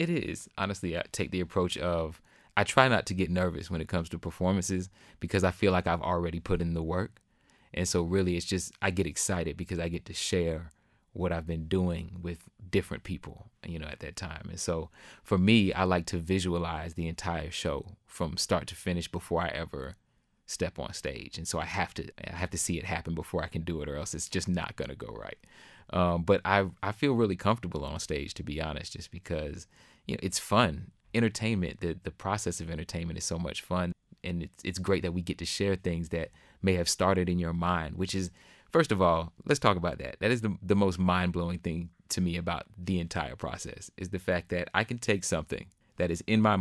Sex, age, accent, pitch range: male, 30-49, American, 85-95 Hz